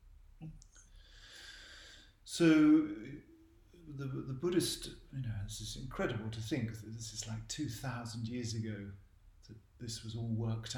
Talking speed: 135 wpm